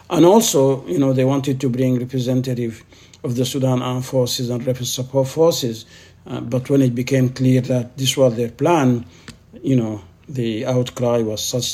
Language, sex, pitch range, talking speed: English, male, 120-140 Hz, 180 wpm